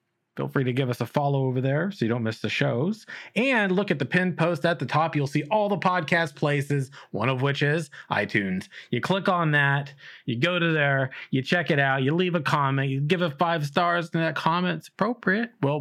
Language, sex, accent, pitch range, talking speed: English, male, American, 125-165 Hz, 230 wpm